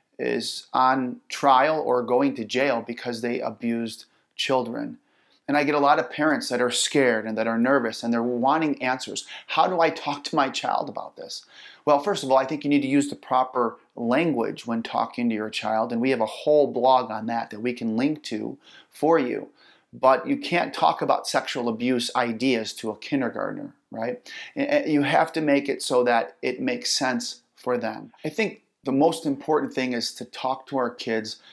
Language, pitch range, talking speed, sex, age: English, 120-160 Hz, 205 wpm, male, 30-49